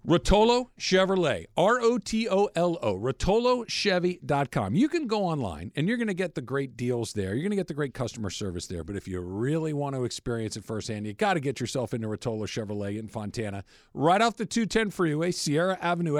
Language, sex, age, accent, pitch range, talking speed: English, male, 50-69, American, 115-165 Hz, 195 wpm